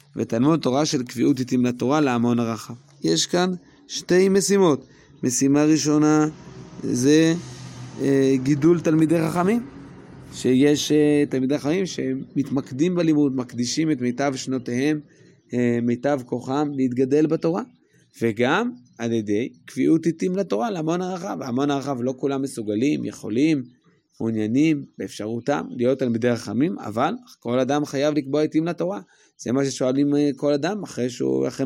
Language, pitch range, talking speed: Hebrew, 125-160 Hz, 120 wpm